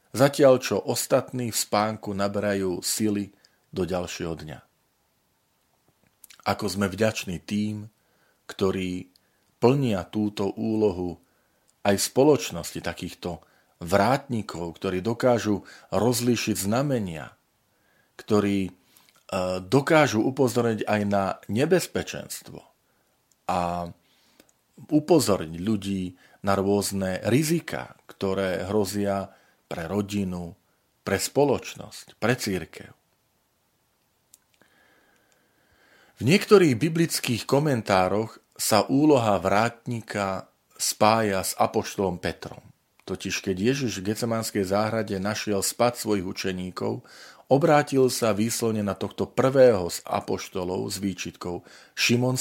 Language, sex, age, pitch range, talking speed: Slovak, male, 40-59, 95-120 Hz, 90 wpm